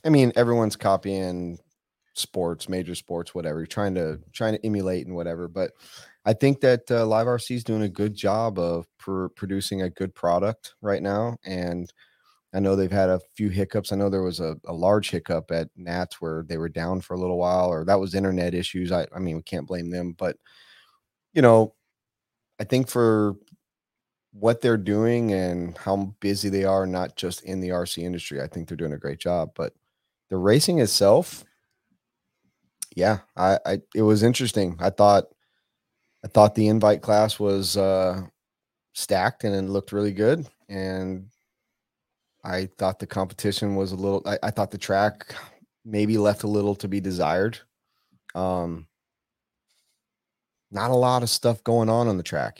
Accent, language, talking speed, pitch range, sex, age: American, English, 180 wpm, 90-110 Hz, male, 30-49